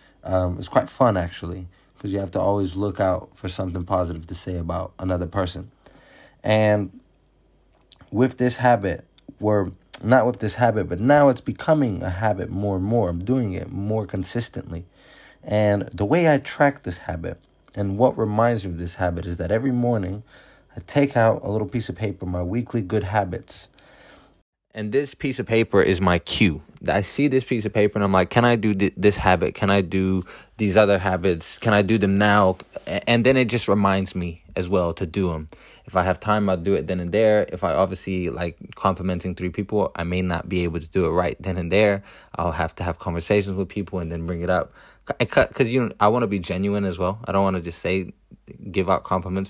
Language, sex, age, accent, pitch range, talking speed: English, male, 20-39, American, 90-110 Hz, 215 wpm